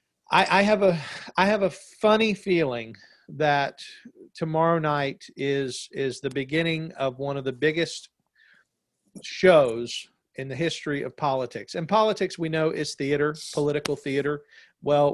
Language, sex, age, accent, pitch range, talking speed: English, male, 40-59, American, 130-165 Hz, 145 wpm